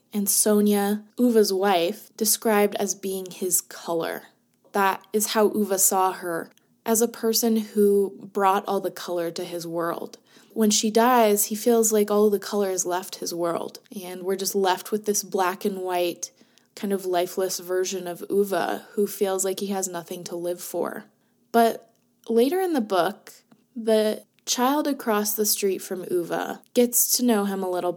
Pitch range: 190-230 Hz